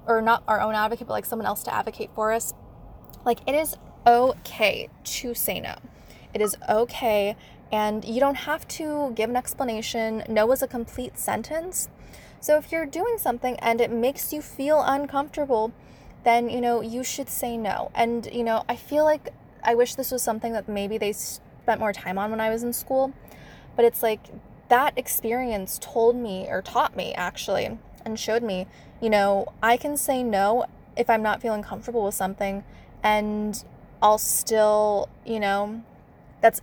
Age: 10-29